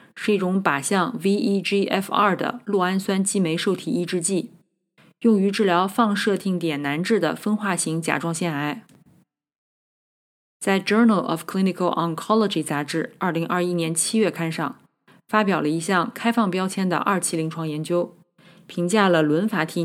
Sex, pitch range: female, 165-205 Hz